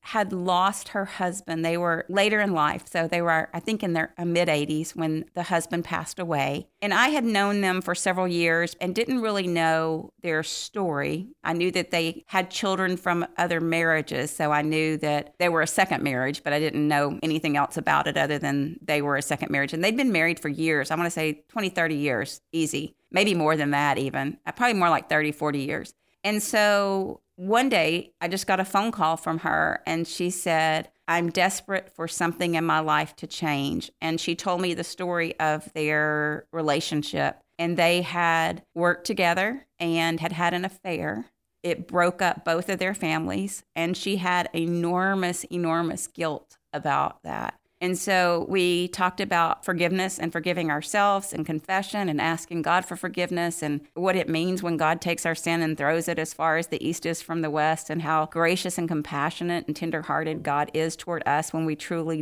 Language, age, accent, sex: English, 50-69, American, female